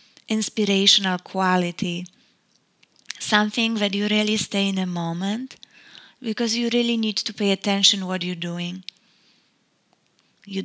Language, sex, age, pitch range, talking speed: English, female, 30-49, 185-215 Hz, 125 wpm